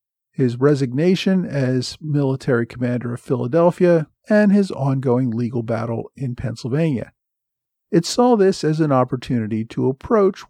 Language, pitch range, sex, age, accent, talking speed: English, 130-185 Hz, male, 50-69, American, 125 wpm